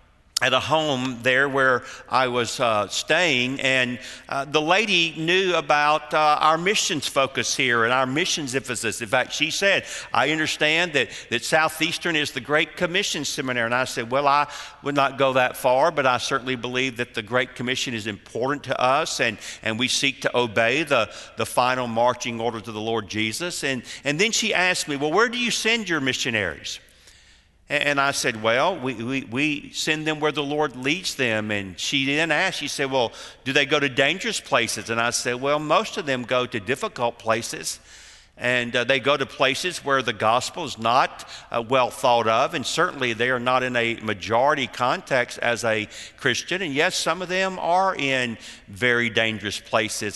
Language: English